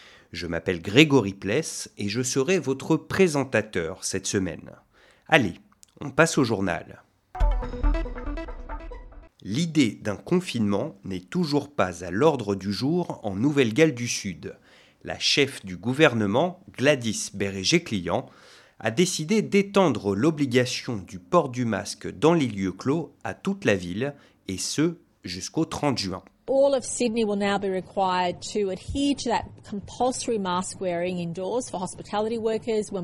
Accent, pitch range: French, 135-200 Hz